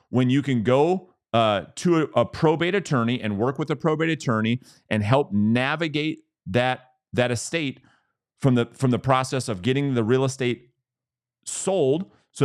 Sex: male